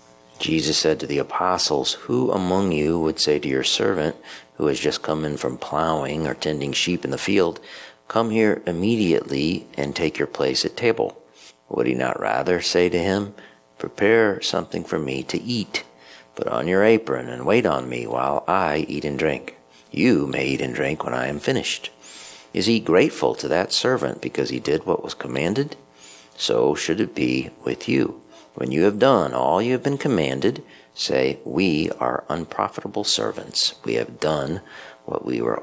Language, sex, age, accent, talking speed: English, male, 50-69, American, 180 wpm